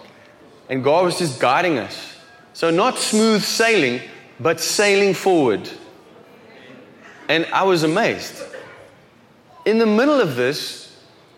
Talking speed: 115 wpm